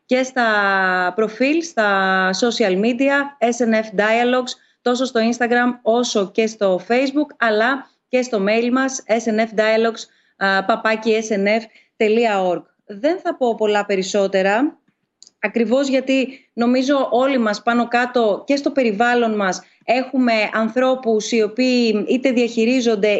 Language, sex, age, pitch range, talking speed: Greek, female, 30-49, 205-255 Hz, 115 wpm